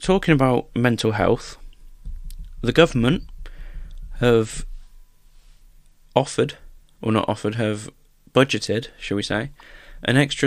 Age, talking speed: 20-39, 105 wpm